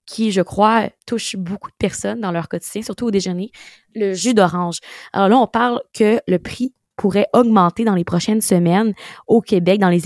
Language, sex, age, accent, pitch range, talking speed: French, female, 20-39, Canadian, 180-225 Hz, 195 wpm